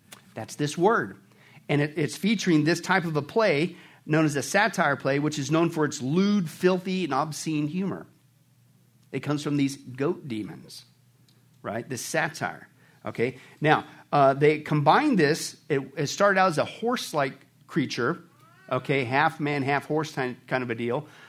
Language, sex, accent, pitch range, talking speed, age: English, male, American, 135-165 Hz, 165 wpm, 50-69